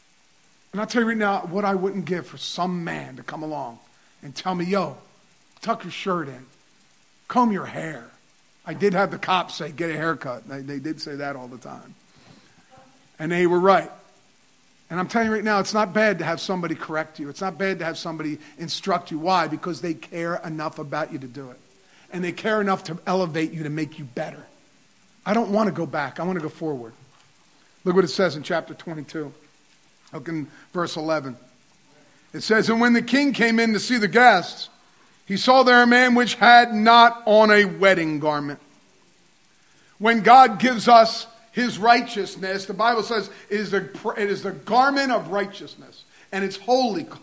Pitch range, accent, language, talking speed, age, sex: 160-230 Hz, American, English, 200 wpm, 40-59, male